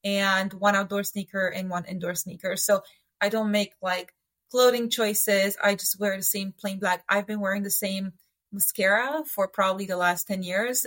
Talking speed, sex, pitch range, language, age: 190 wpm, female, 190-225 Hz, English, 20-39